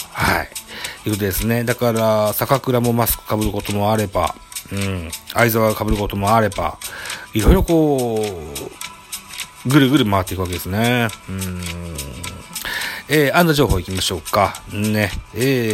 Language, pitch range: Japanese, 100-125 Hz